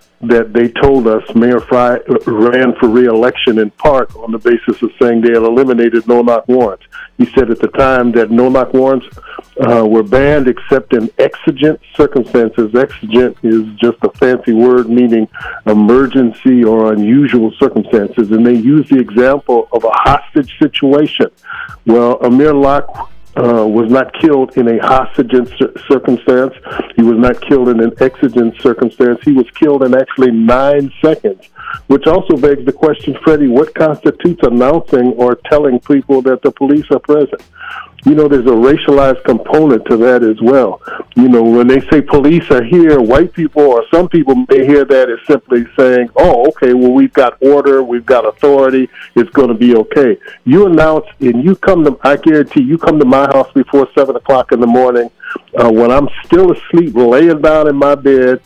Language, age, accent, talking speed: English, 50-69, American, 175 wpm